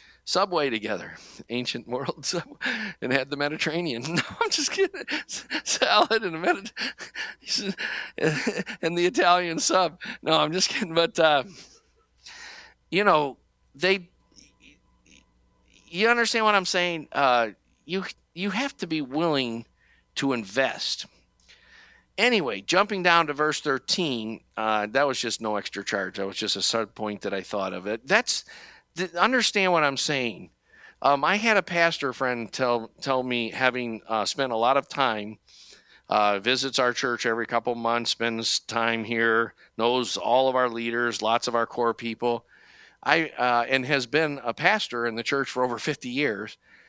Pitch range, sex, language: 115-170 Hz, male, English